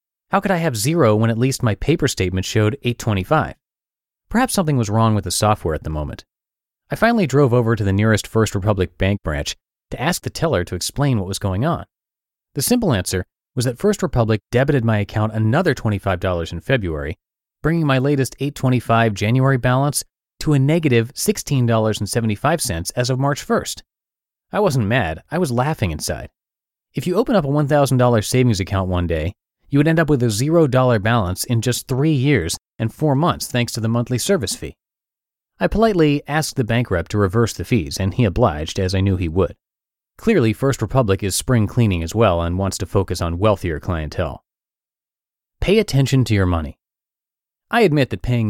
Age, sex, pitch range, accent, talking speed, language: 30-49, male, 95-135 Hz, American, 190 wpm, English